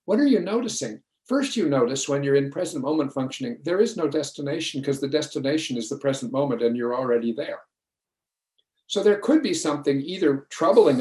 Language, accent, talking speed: English, American, 190 wpm